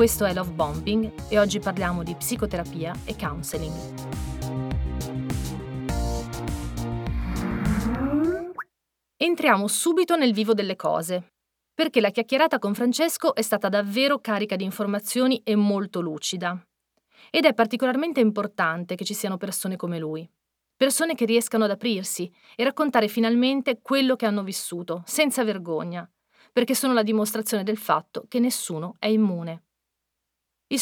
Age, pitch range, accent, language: 40-59, 180-250 Hz, native, Italian